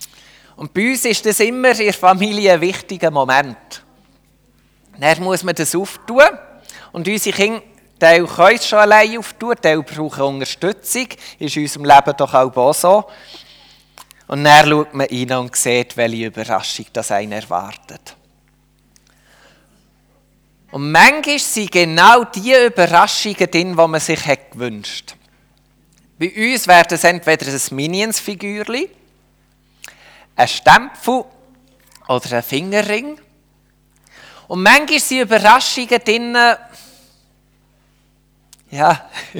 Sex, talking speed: male, 120 wpm